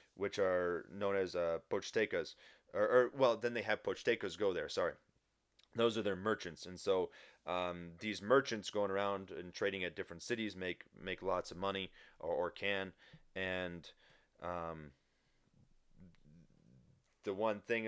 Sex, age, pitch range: male, 30-49, 90-110 Hz